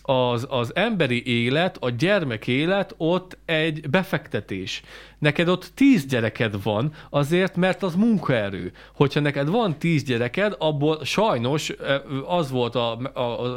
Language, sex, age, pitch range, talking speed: Hungarian, male, 30-49, 125-170 Hz, 135 wpm